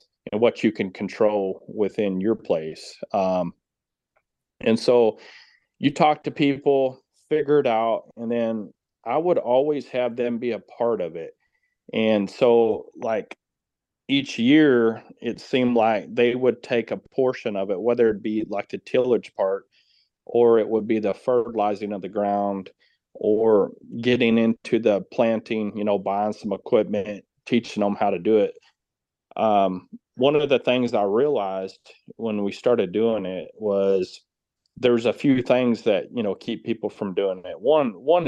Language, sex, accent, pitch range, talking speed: English, male, American, 100-130 Hz, 165 wpm